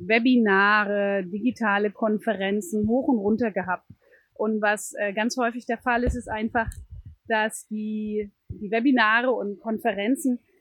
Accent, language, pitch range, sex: German, German, 210-265 Hz, female